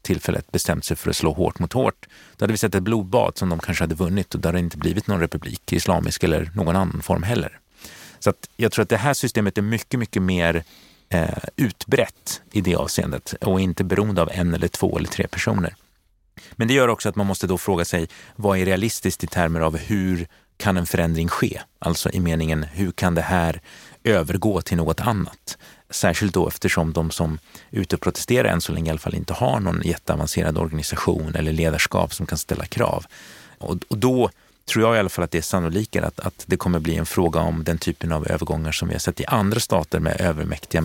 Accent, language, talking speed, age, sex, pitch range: native, Swedish, 215 wpm, 30-49, male, 80-100 Hz